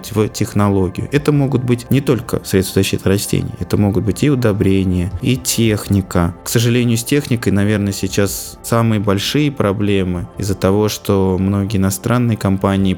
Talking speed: 150 wpm